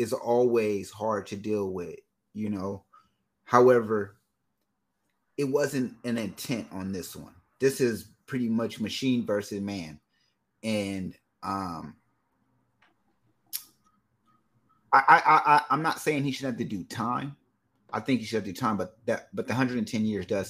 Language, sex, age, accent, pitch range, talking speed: English, male, 30-49, American, 100-120 Hz, 150 wpm